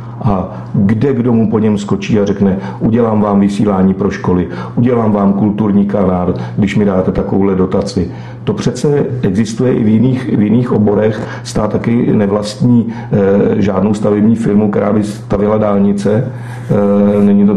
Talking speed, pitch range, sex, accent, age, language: 155 wpm, 100-110 Hz, male, native, 50-69, Czech